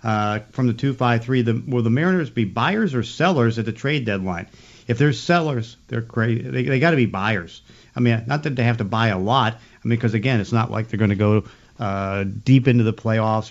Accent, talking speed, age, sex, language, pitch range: American, 235 wpm, 50-69, male, English, 105-120 Hz